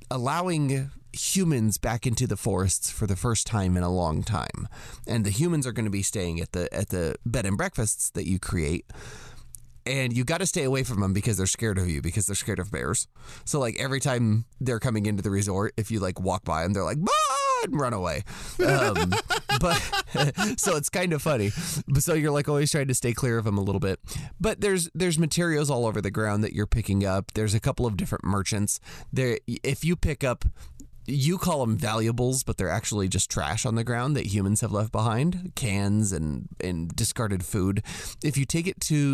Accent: American